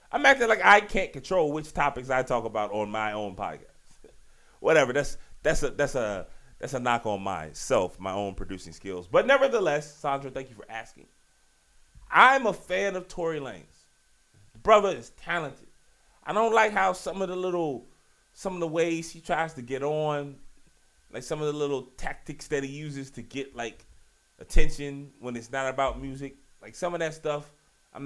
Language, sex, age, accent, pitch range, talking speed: English, male, 30-49, American, 130-170 Hz, 190 wpm